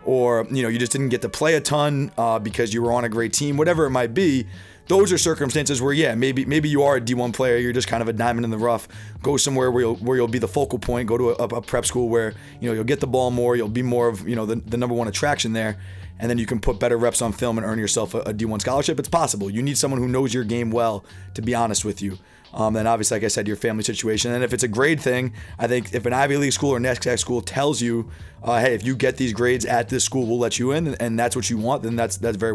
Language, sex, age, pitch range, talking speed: English, male, 30-49, 110-135 Hz, 295 wpm